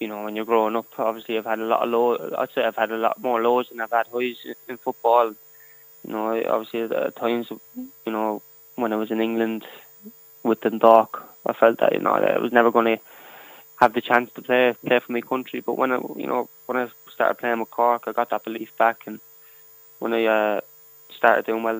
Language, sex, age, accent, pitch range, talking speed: English, male, 20-39, British, 115-125 Hz, 230 wpm